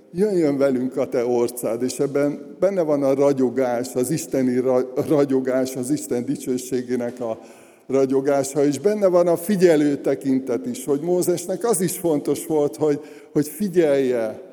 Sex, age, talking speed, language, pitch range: male, 60-79, 145 wpm, Hungarian, 115-150 Hz